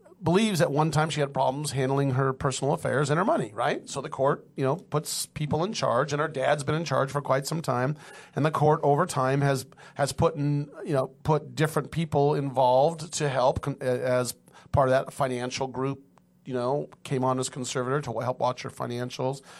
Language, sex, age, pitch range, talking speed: English, male, 40-59, 130-150 Hz, 210 wpm